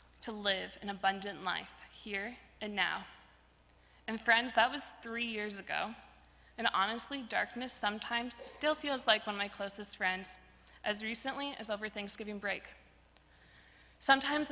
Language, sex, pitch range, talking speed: English, female, 195-240 Hz, 140 wpm